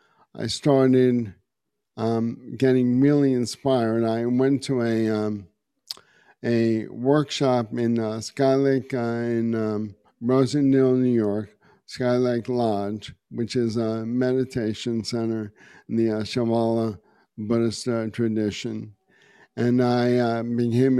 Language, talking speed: English, 120 wpm